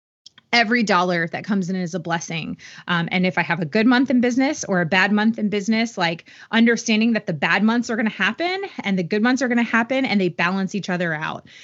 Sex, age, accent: female, 20-39, American